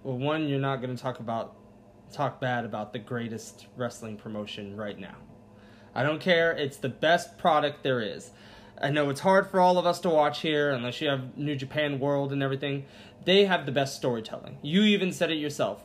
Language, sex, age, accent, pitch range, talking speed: English, male, 20-39, American, 130-180 Hz, 205 wpm